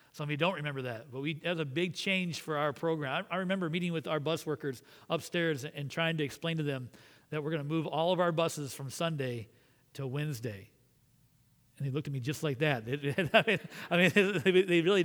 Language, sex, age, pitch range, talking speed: English, male, 40-59, 140-170 Hz, 220 wpm